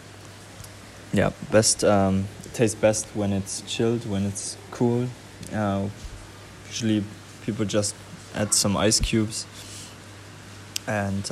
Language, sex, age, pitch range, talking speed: English, male, 20-39, 100-110 Hz, 105 wpm